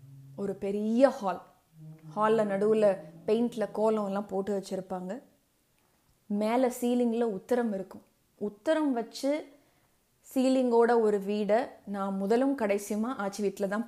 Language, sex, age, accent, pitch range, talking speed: Tamil, female, 20-39, native, 195-230 Hz, 100 wpm